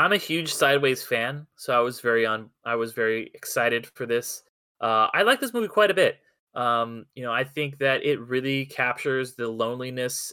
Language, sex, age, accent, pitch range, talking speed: English, male, 20-39, American, 115-145 Hz, 205 wpm